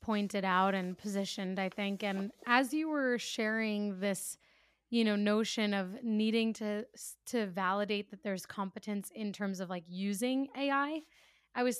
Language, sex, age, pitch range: English, female, 20-39, 200-230 Hz